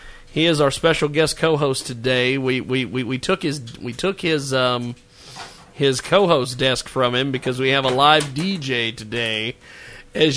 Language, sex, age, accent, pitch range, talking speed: English, male, 40-59, American, 140-195 Hz, 175 wpm